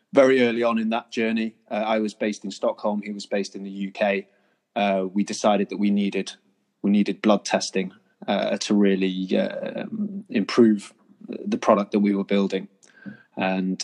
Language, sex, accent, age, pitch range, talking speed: English, male, British, 20-39, 100-115 Hz, 175 wpm